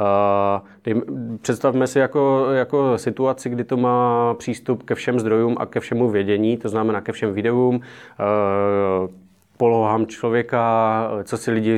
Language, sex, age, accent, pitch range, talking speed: Czech, male, 20-39, native, 105-120 Hz, 145 wpm